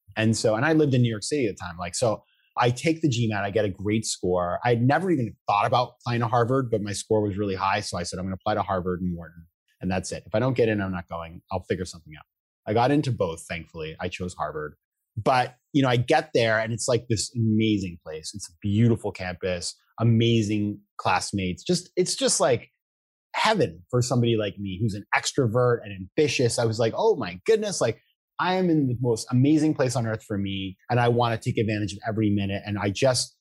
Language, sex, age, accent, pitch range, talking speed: English, male, 30-49, American, 100-135 Hz, 240 wpm